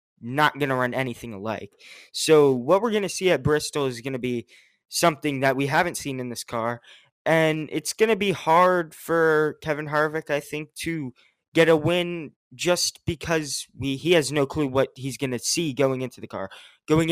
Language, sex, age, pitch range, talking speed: English, male, 20-39, 130-160 Hz, 205 wpm